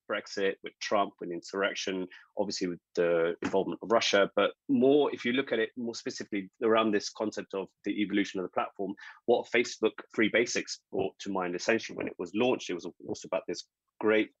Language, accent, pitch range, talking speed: English, British, 90-105 Hz, 195 wpm